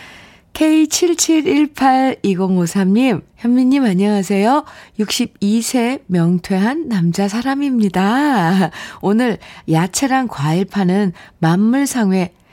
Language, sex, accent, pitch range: Korean, female, native, 165-230 Hz